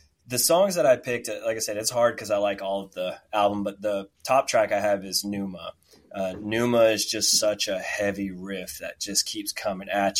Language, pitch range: English, 95-115 Hz